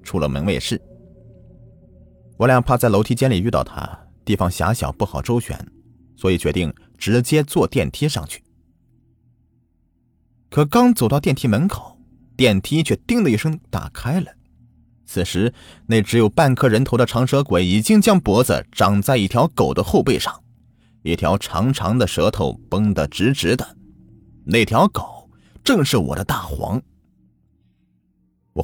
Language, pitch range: Chinese, 90-125 Hz